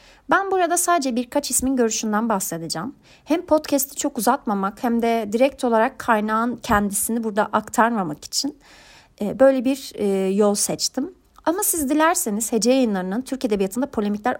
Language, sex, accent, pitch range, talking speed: Turkish, female, native, 205-280 Hz, 135 wpm